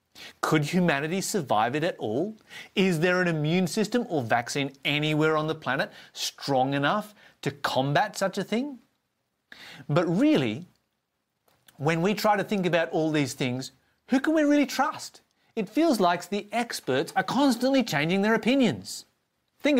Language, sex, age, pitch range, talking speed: English, male, 30-49, 150-200 Hz, 155 wpm